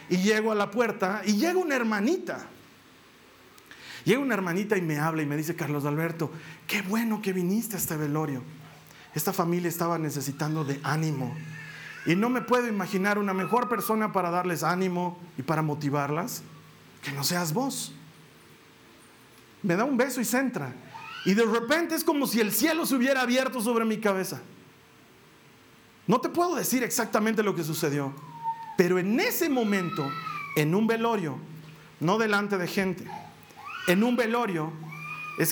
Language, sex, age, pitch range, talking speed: Spanish, male, 40-59, 160-230 Hz, 160 wpm